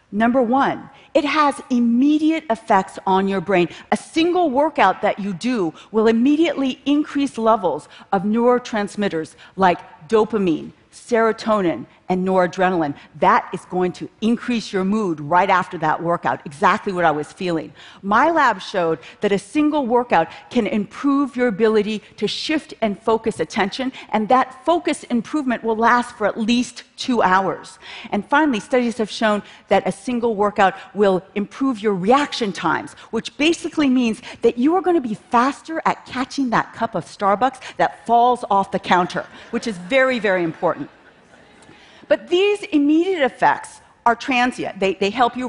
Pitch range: 190-265 Hz